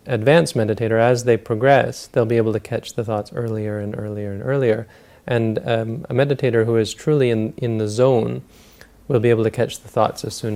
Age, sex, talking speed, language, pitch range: 30-49, male, 210 wpm, English, 105-120 Hz